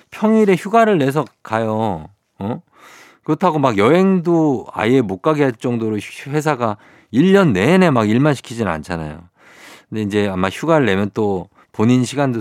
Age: 50-69